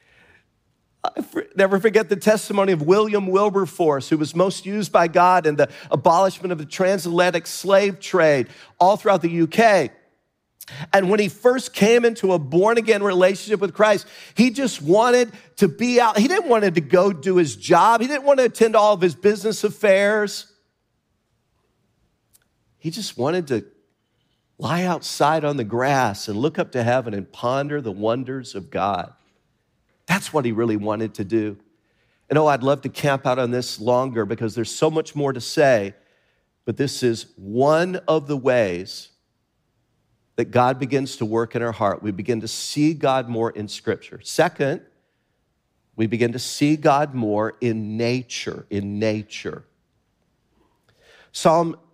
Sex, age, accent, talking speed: male, 50-69, American, 160 wpm